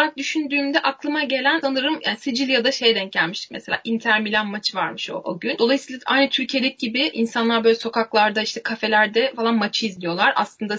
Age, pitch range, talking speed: 10-29, 215-275 Hz, 160 wpm